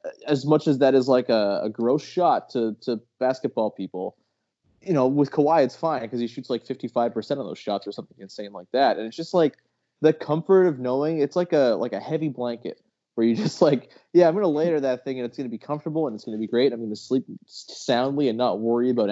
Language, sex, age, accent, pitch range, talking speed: English, male, 20-39, American, 115-150 Hz, 255 wpm